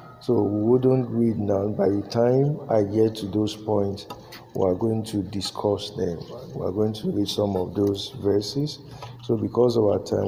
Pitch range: 105-130 Hz